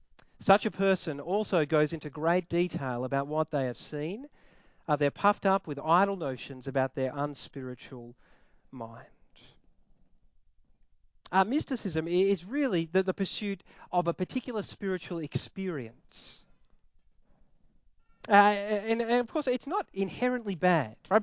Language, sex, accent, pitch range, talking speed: English, male, Australian, 145-210 Hz, 130 wpm